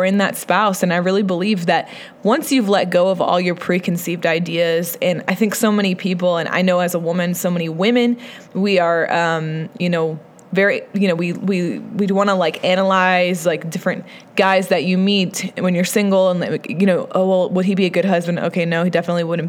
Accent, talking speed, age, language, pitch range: American, 220 wpm, 20-39, English, 175-205 Hz